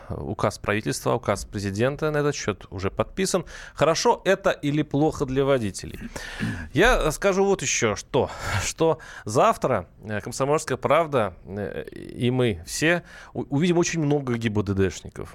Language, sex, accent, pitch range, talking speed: Russian, male, native, 110-150 Hz, 120 wpm